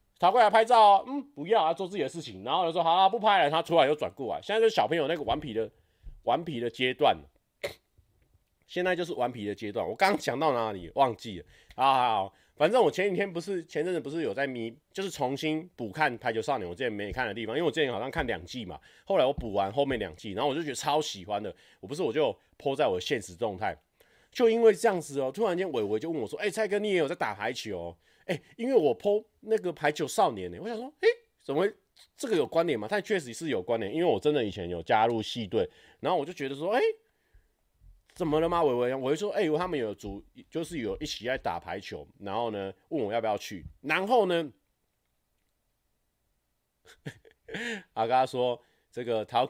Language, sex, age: Chinese, male, 30-49